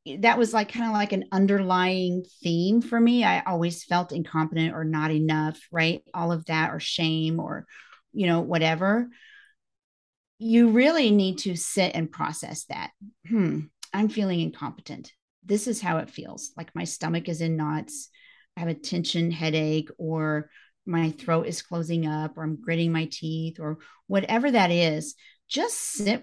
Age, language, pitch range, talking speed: 40-59, English, 165-230 Hz, 165 wpm